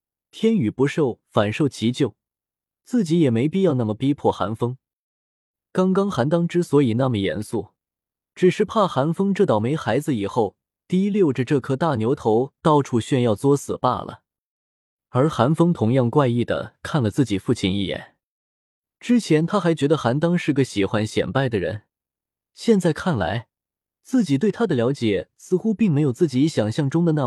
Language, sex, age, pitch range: Chinese, male, 20-39, 115-165 Hz